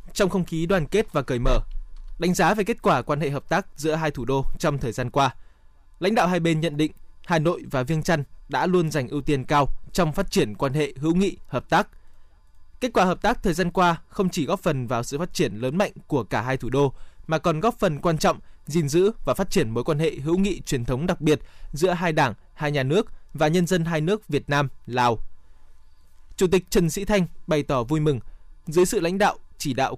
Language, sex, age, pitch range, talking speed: Vietnamese, male, 20-39, 135-175 Hz, 240 wpm